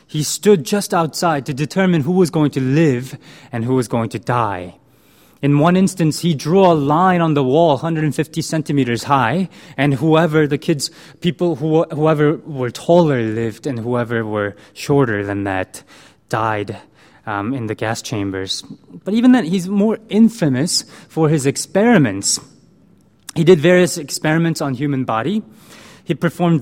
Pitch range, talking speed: 120-165 Hz, 155 wpm